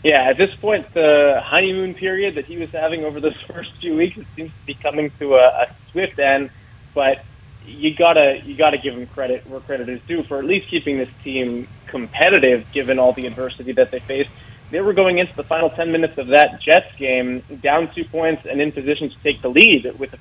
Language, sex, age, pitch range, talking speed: English, male, 20-39, 125-150 Hz, 225 wpm